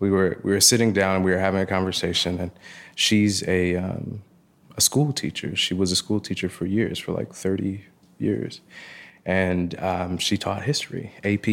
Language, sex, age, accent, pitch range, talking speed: English, male, 20-39, American, 95-120 Hz, 190 wpm